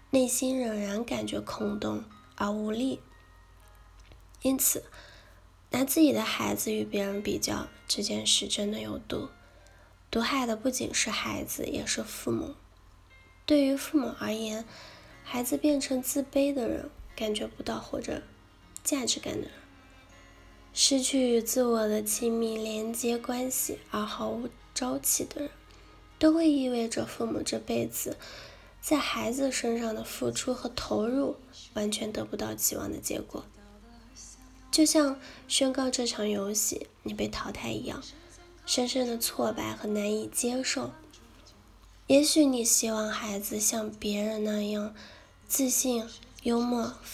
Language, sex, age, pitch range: Chinese, female, 10-29, 210-265 Hz